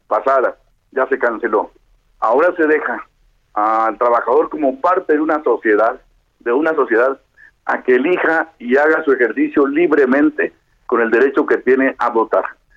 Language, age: Spanish, 60-79